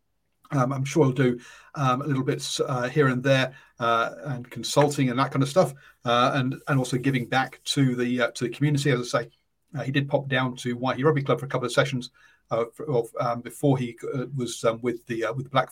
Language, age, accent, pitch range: English, 40-59, British, 125-145 Hz